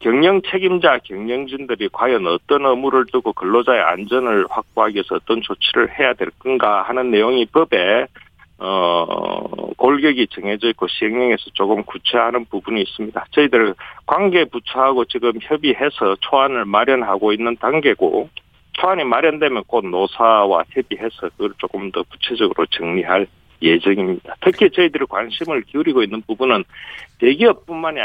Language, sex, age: Korean, male, 40-59